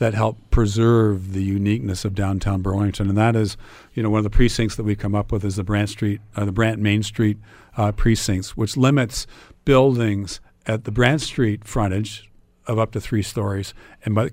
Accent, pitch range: American, 105-120 Hz